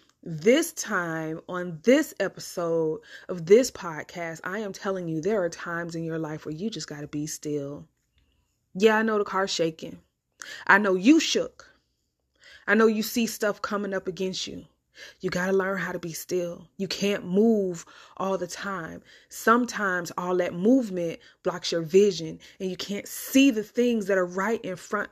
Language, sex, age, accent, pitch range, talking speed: English, female, 20-39, American, 180-260 Hz, 180 wpm